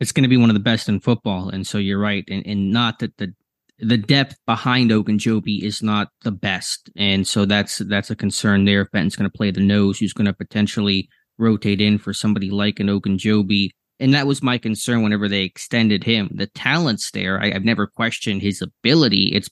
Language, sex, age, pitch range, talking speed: English, male, 20-39, 100-115 Hz, 220 wpm